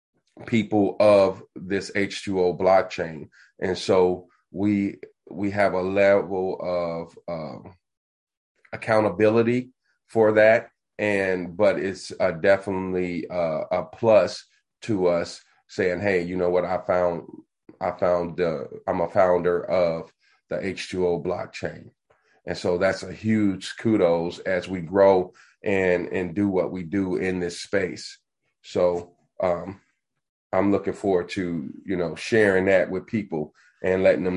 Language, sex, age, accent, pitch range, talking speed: English, male, 30-49, American, 90-100 Hz, 135 wpm